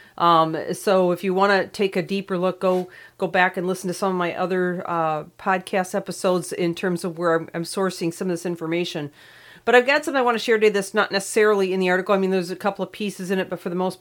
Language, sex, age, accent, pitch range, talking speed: English, female, 40-59, American, 165-195 Hz, 260 wpm